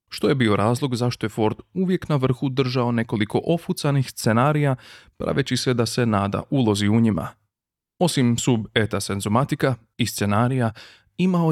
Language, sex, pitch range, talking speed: Croatian, male, 110-140 Hz, 150 wpm